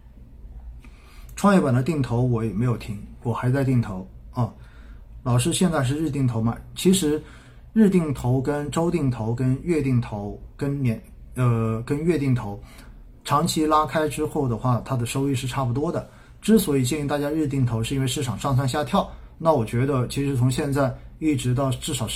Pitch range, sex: 110-145 Hz, male